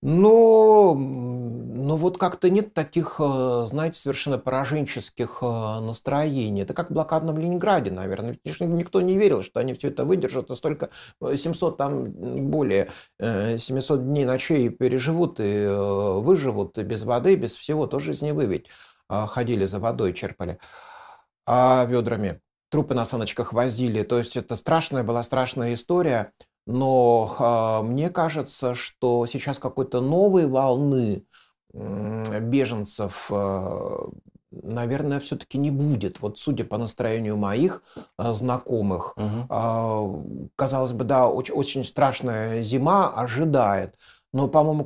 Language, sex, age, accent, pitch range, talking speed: Russian, male, 30-49, native, 115-150 Hz, 125 wpm